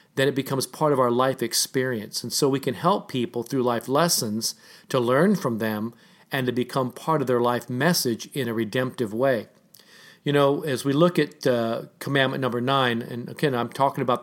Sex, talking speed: male, 200 wpm